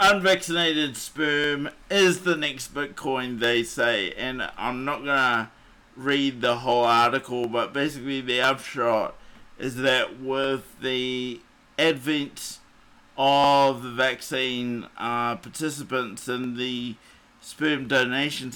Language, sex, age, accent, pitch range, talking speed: English, male, 50-69, Australian, 120-150 Hz, 115 wpm